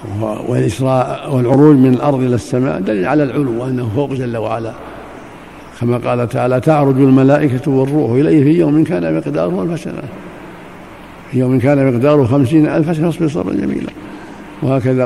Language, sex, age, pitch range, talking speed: Arabic, male, 60-79, 125-140 Hz, 140 wpm